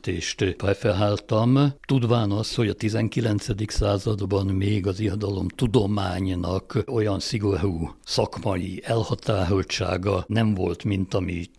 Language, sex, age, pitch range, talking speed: Hungarian, male, 60-79, 100-130 Hz, 95 wpm